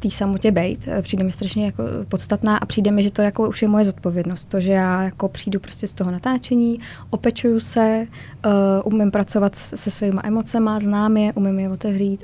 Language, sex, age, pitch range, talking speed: Czech, female, 20-39, 190-205 Hz, 170 wpm